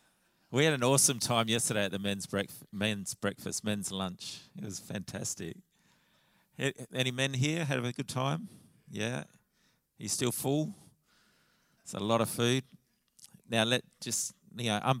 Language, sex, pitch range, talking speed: English, male, 105-135 Hz, 160 wpm